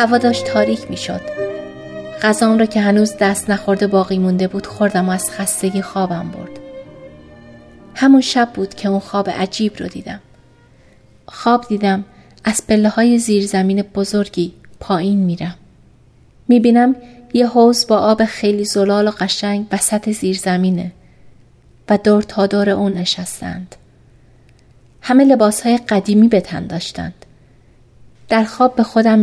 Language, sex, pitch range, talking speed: Persian, female, 185-225 Hz, 135 wpm